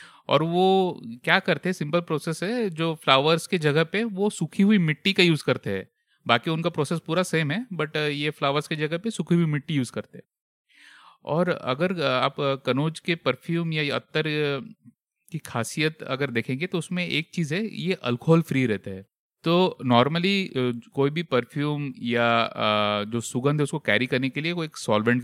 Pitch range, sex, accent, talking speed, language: 120-165 Hz, male, native, 190 wpm, Hindi